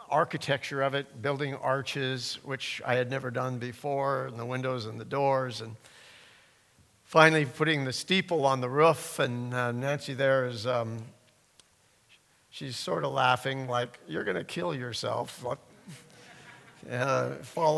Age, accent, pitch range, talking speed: 60-79, American, 125-150 Hz, 145 wpm